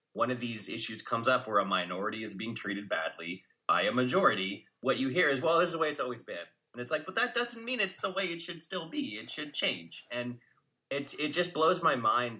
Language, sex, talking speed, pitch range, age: English, male, 250 wpm, 100-135 Hz, 20-39